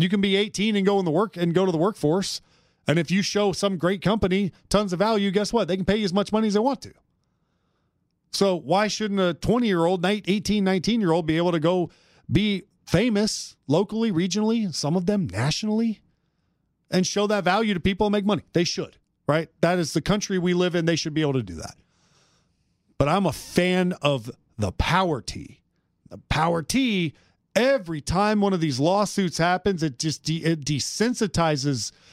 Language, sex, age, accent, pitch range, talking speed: English, male, 40-59, American, 160-205 Hz, 200 wpm